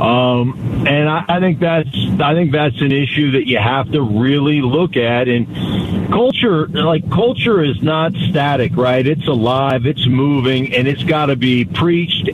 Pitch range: 120-150 Hz